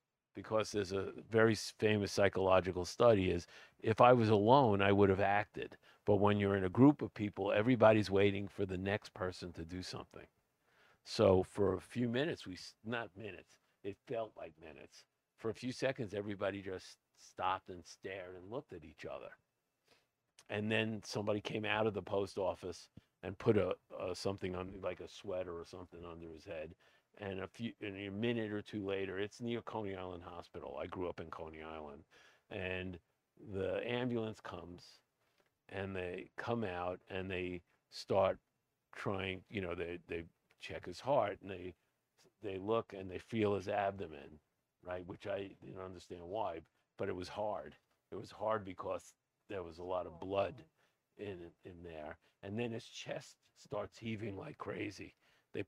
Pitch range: 90-110 Hz